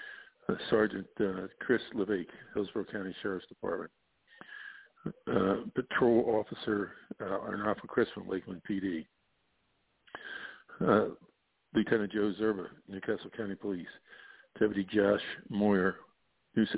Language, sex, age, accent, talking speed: English, male, 50-69, American, 100 wpm